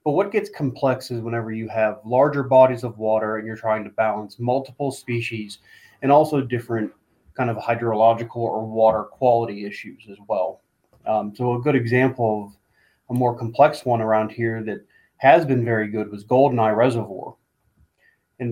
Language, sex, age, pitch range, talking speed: English, male, 30-49, 115-130 Hz, 170 wpm